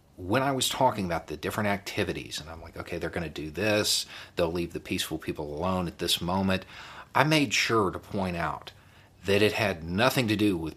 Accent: American